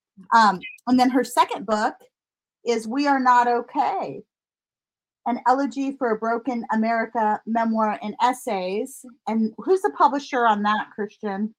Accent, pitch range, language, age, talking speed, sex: American, 210-265 Hz, English, 30-49, 140 wpm, female